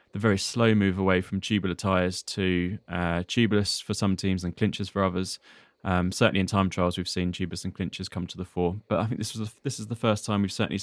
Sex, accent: male, British